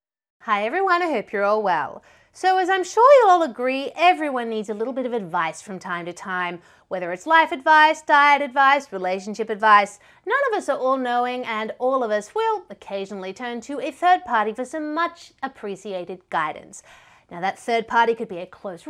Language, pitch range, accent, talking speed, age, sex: English, 200-325 Hz, Australian, 200 wpm, 30-49, female